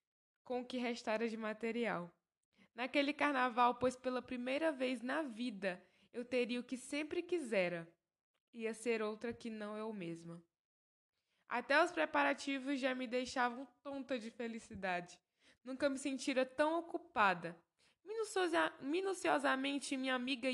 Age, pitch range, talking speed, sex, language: 10-29, 220-270 Hz, 130 wpm, female, Portuguese